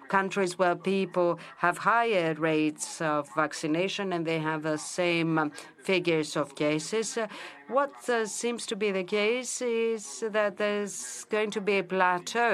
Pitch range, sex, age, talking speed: 150-185 Hz, female, 50-69, 150 wpm